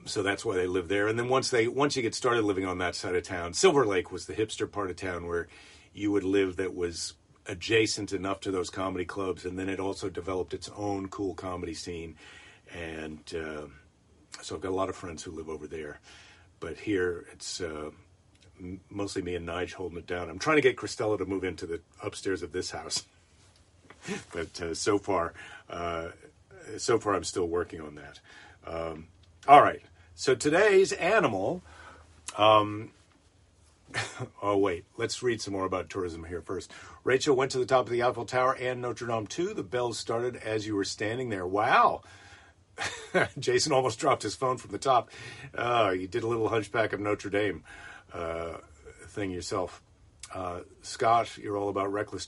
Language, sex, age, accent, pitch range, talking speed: English, male, 40-59, American, 90-115 Hz, 190 wpm